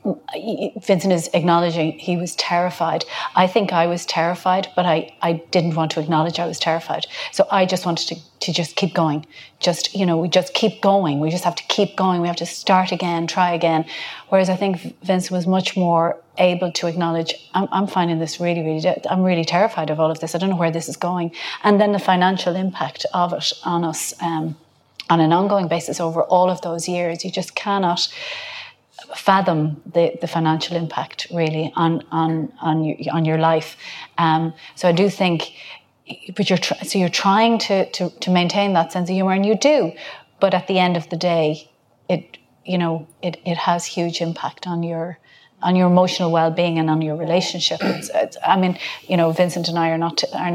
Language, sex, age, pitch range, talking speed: English, female, 30-49, 165-185 Hz, 200 wpm